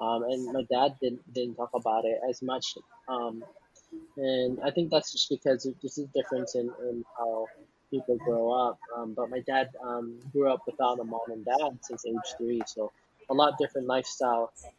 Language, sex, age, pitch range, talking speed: English, male, 20-39, 120-135 Hz, 190 wpm